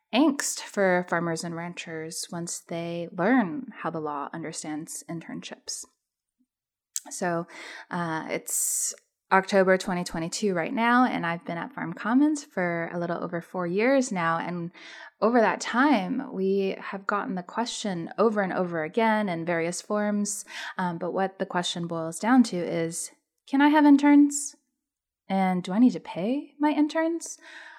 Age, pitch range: 20-39, 175-265 Hz